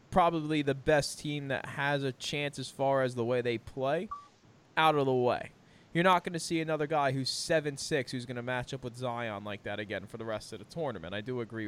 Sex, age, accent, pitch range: male, 20-39, American, 130-165 Hz